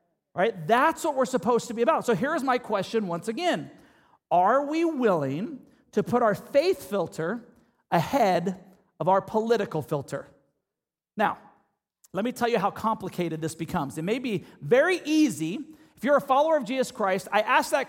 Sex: male